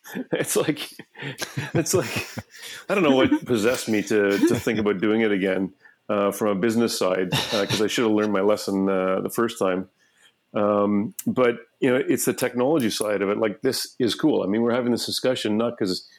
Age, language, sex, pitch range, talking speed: 40-59, English, male, 105-125 Hz, 210 wpm